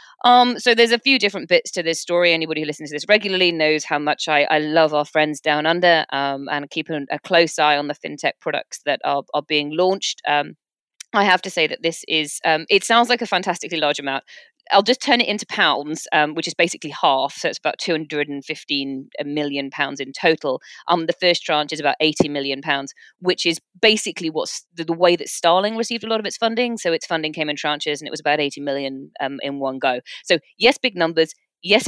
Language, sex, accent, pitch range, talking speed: English, female, British, 150-195 Hz, 230 wpm